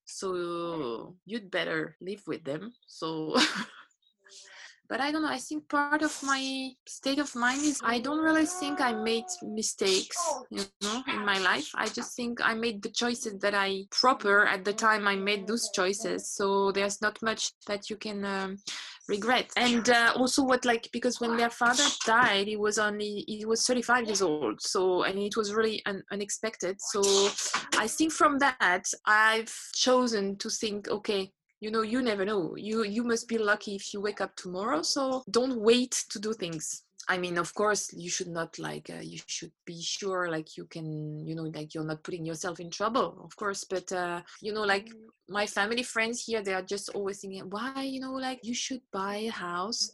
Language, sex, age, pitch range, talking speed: English, female, 20-39, 190-245 Hz, 195 wpm